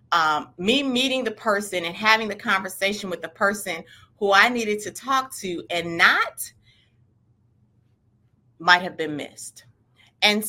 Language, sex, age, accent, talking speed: English, female, 30-49, American, 145 wpm